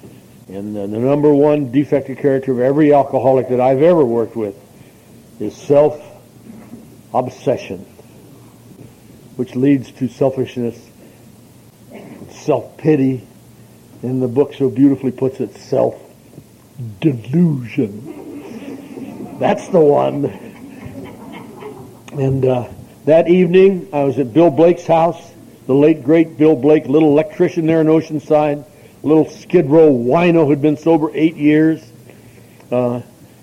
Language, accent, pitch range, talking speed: English, American, 125-165 Hz, 110 wpm